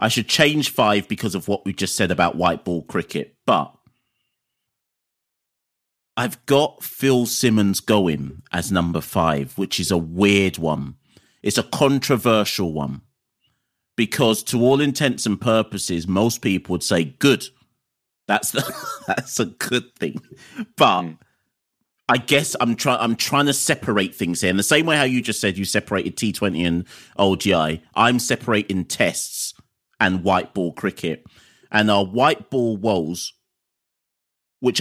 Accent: British